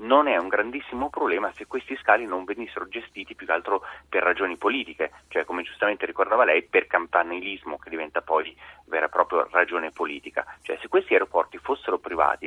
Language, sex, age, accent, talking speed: Italian, male, 30-49, native, 185 wpm